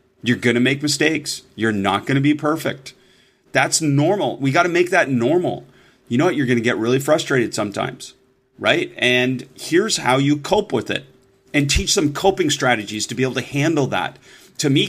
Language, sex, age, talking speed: German, male, 30-49, 200 wpm